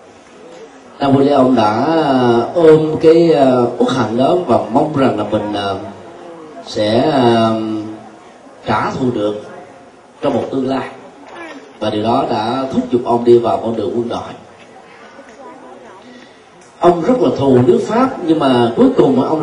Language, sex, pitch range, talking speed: Vietnamese, male, 120-170 Hz, 135 wpm